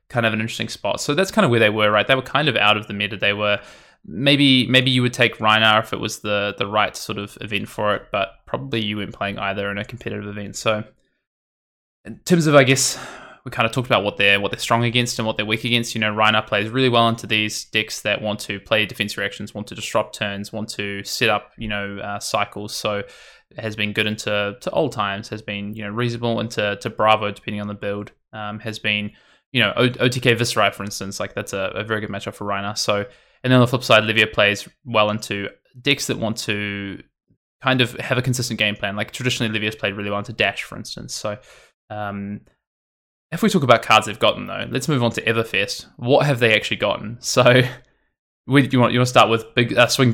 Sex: male